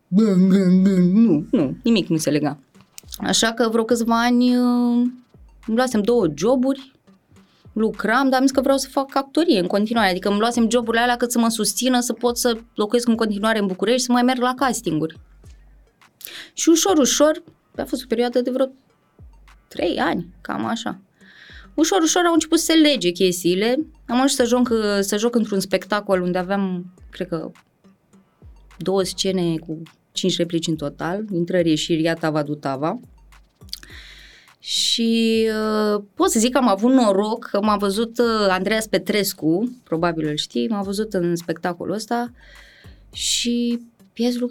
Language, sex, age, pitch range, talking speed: Romanian, female, 20-39, 185-250 Hz, 160 wpm